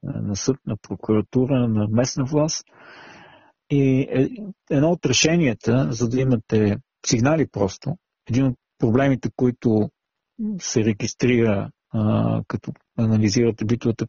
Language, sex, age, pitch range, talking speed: Bulgarian, male, 50-69, 110-130 Hz, 110 wpm